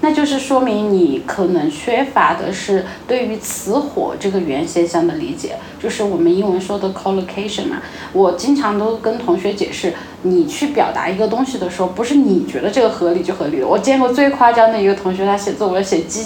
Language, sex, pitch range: Chinese, female, 215-330 Hz